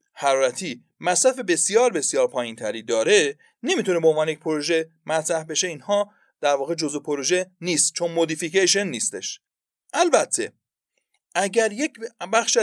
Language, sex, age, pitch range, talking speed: Persian, male, 30-49, 150-245 Hz, 130 wpm